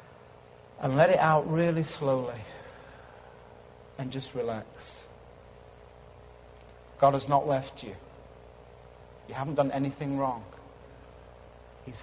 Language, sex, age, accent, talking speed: English, male, 40-59, British, 100 wpm